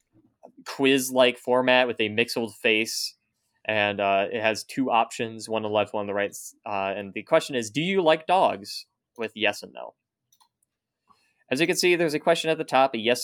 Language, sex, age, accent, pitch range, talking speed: English, male, 20-39, American, 110-145 Hz, 210 wpm